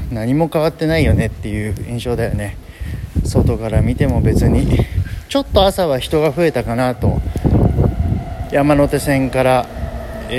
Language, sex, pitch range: Japanese, male, 95-125 Hz